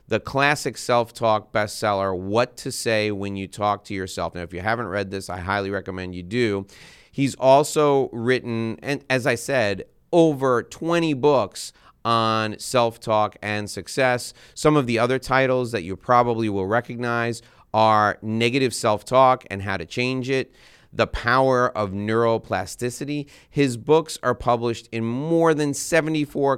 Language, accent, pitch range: English, American, 110-135 Hz